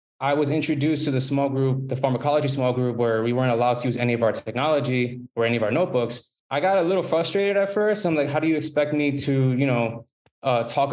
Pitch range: 120-140 Hz